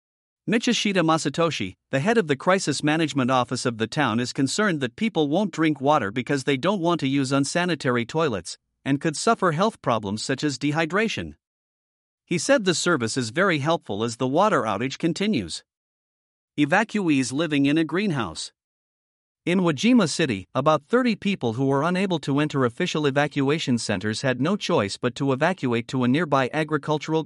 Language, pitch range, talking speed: English, 130-175 Hz, 165 wpm